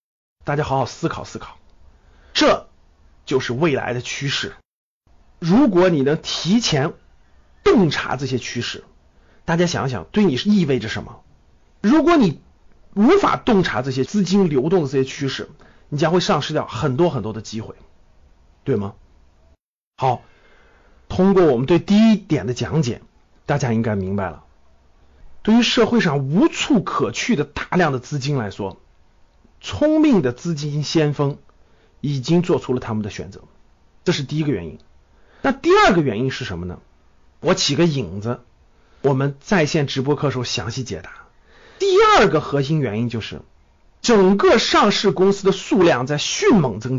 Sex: male